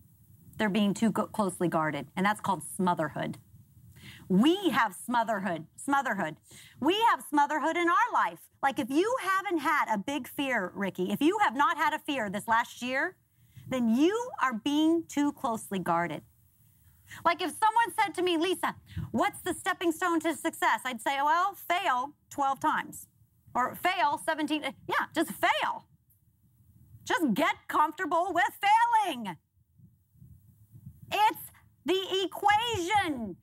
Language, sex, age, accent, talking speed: English, female, 40-59, American, 140 wpm